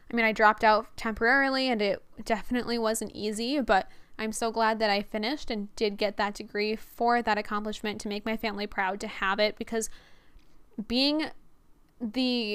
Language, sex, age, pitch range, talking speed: English, female, 10-29, 210-240 Hz, 175 wpm